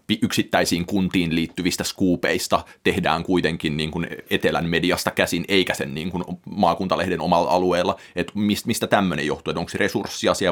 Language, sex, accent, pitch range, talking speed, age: Finnish, male, native, 90-100 Hz, 145 wpm, 30-49